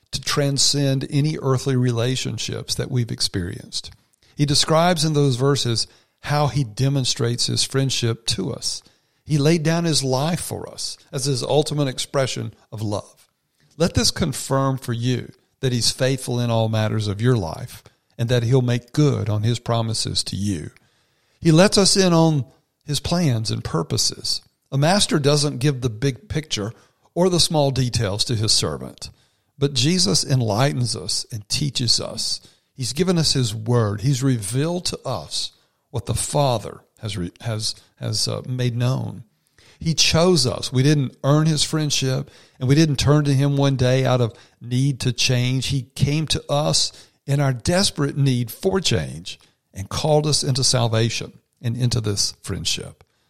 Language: English